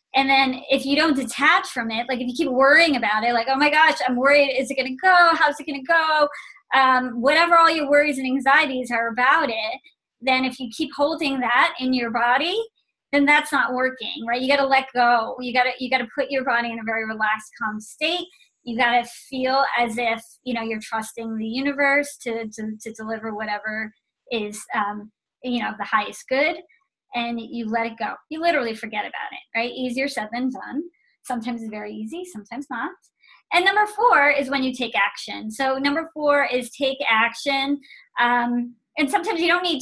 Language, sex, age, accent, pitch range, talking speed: English, male, 20-39, American, 235-290 Hz, 210 wpm